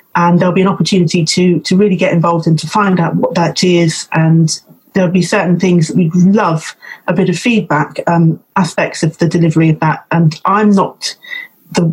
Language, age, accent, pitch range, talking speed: English, 30-49, British, 170-215 Hz, 200 wpm